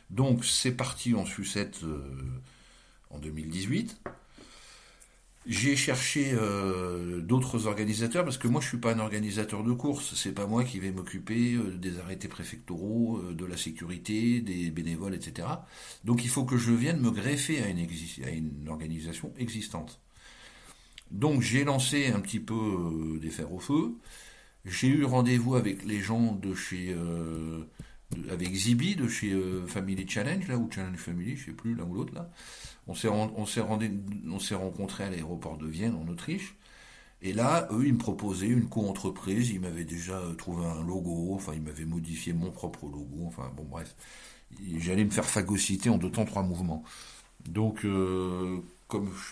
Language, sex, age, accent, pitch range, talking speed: French, male, 60-79, French, 85-115 Hz, 180 wpm